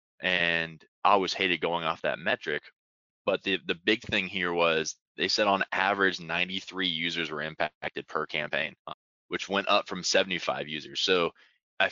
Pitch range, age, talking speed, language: 80-95 Hz, 20-39, 165 wpm, English